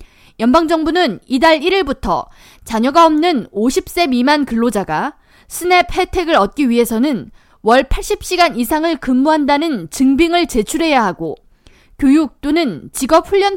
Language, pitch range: Korean, 240-335 Hz